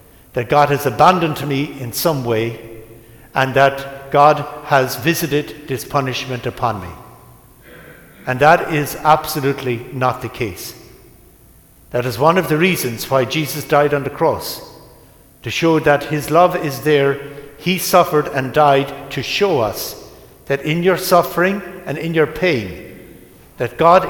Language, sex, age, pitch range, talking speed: English, male, 60-79, 135-165 Hz, 150 wpm